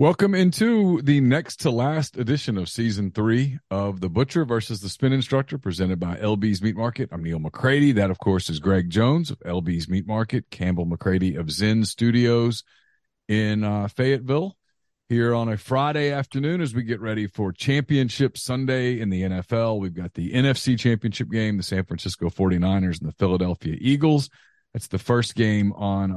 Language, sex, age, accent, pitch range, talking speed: English, male, 40-59, American, 95-120 Hz, 170 wpm